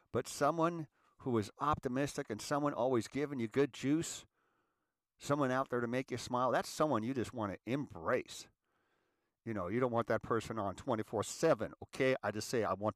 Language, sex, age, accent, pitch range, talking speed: English, male, 50-69, American, 105-135 Hz, 190 wpm